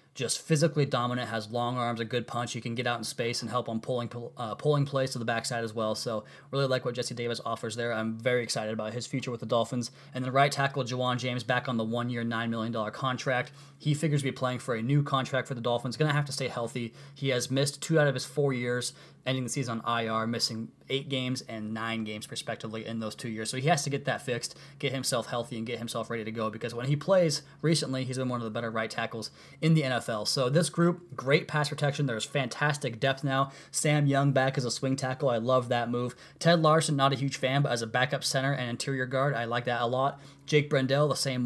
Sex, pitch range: male, 115-135 Hz